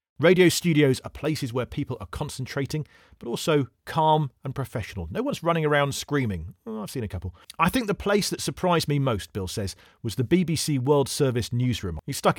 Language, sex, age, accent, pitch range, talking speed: English, male, 40-59, British, 110-165 Hz, 195 wpm